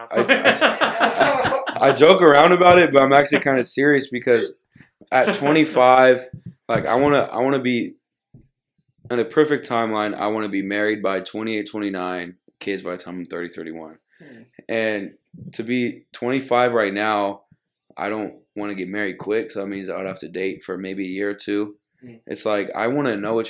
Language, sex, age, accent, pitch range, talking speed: English, male, 20-39, American, 95-115 Hz, 195 wpm